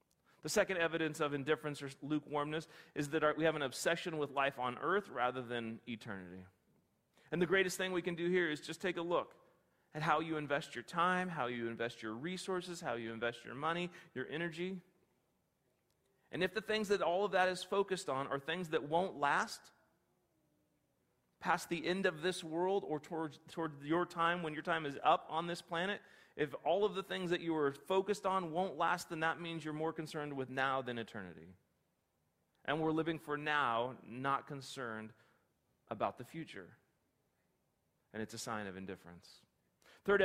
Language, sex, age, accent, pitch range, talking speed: English, male, 30-49, American, 140-185 Hz, 185 wpm